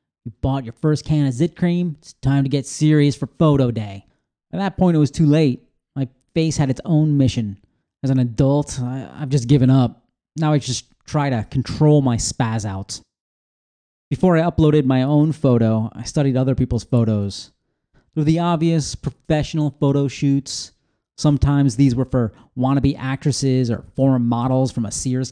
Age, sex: 30-49, male